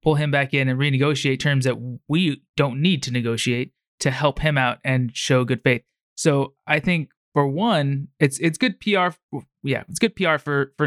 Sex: male